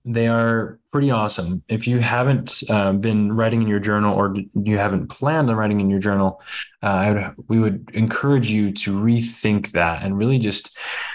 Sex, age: male, 20-39